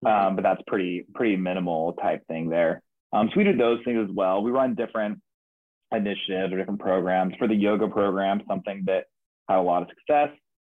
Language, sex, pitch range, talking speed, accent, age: English, male, 95-115 Hz, 195 wpm, American, 20-39